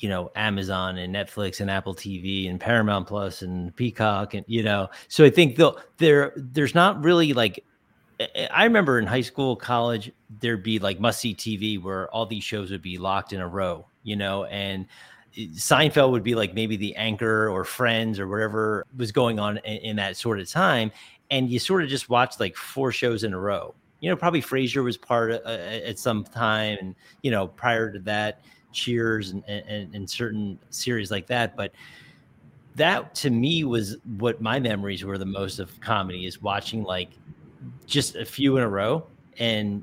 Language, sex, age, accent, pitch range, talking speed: English, male, 30-49, American, 100-120 Hz, 195 wpm